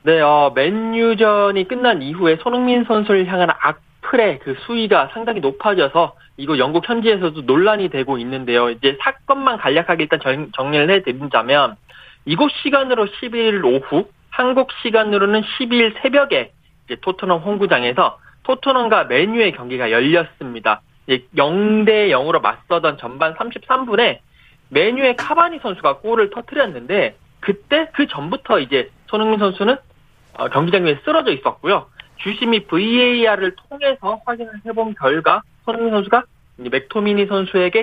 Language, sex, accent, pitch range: Korean, male, native, 165-235 Hz